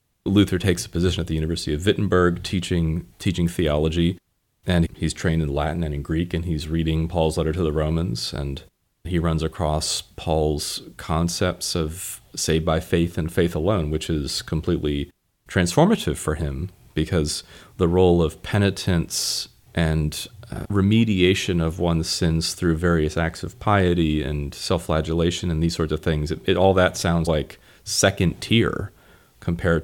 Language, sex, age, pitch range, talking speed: English, male, 30-49, 80-95 Hz, 160 wpm